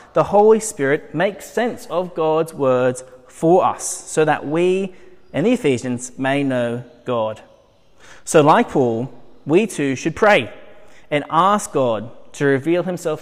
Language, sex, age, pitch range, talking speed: English, male, 20-39, 130-175 Hz, 145 wpm